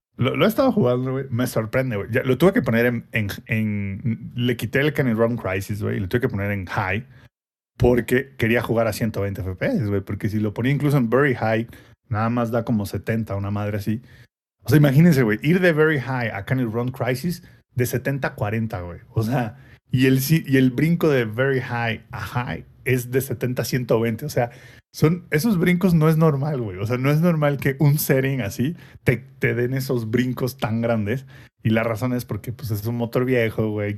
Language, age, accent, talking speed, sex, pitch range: Spanish, 30-49, Mexican, 210 wpm, male, 115-135 Hz